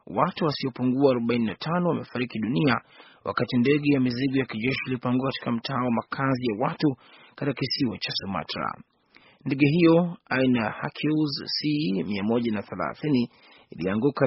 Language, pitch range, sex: Swahili, 125-150 Hz, male